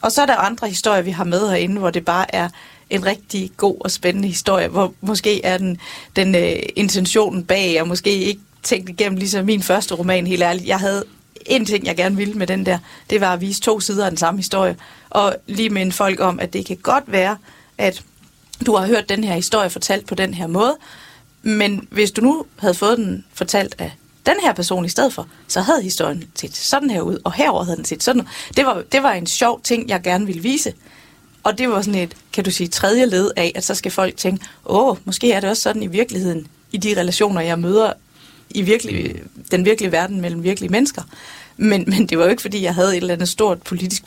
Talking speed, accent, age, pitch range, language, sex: 235 wpm, native, 40-59, 180-215 Hz, Danish, female